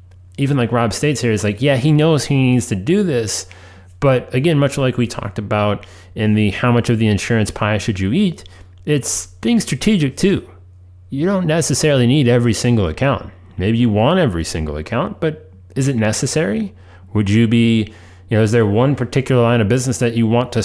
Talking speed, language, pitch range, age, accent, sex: 205 wpm, English, 90-120 Hz, 30-49, American, male